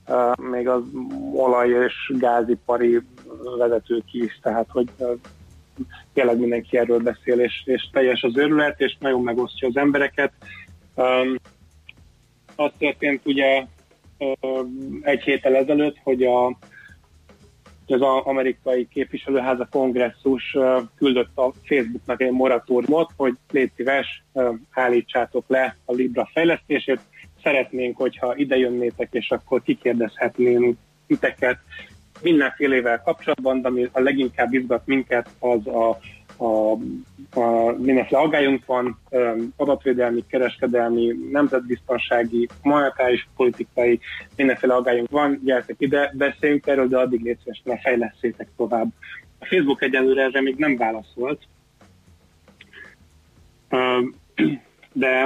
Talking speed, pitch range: 110 wpm, 120-135 Hz